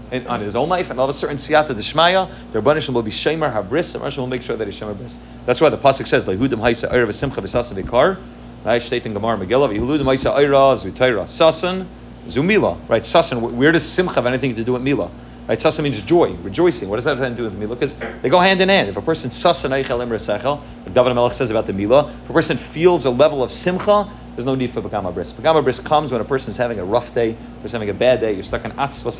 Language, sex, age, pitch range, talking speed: English, male, 40-59, 110-135 Hz, 260 wpm